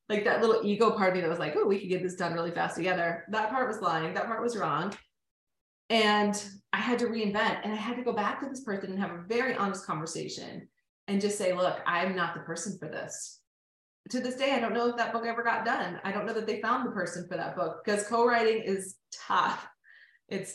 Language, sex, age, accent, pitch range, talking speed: English, female, 20-39, American, 185-245 Hz, 250 wpm